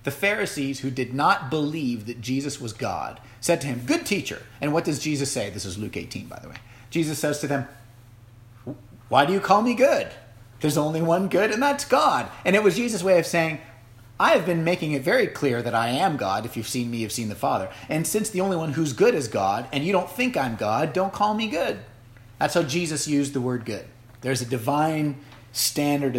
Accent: American